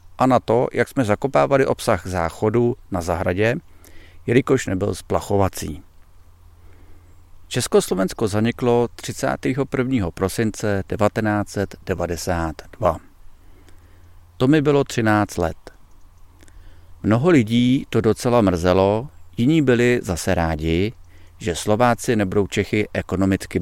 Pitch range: 85-115 Hz